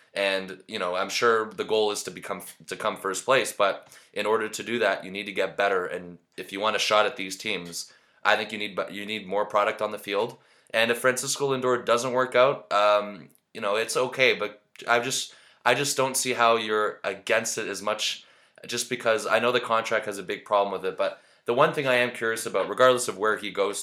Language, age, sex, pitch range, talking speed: English, 20-39, male, 100-115 Hz, 240 wpm